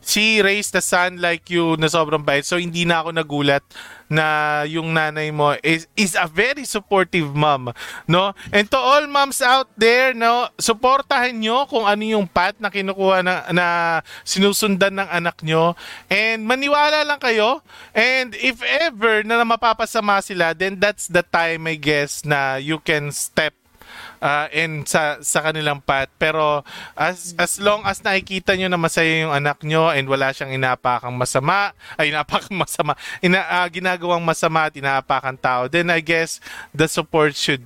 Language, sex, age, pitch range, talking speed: Filipino, male, 20-39, 155-205 Hz, 165 wpm